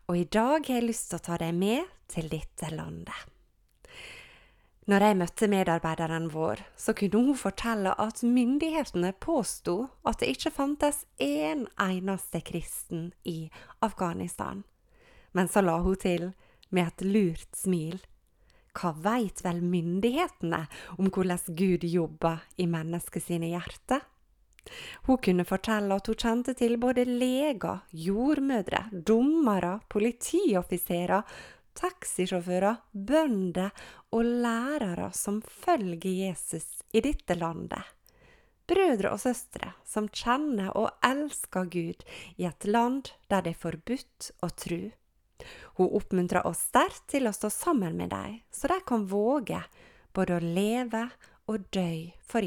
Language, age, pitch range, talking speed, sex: English, 30-49, 175-245 Hz, 120 wpm, female